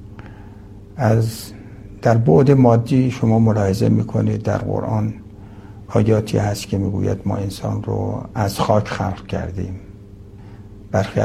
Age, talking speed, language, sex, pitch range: 60-79, 110 wpm, Persian, male, 100-115 Hz